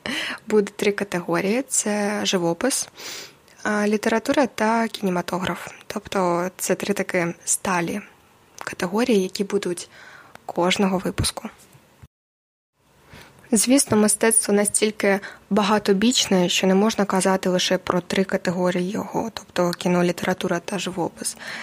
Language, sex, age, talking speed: Ukrainian, female, 20-39, 100 wpm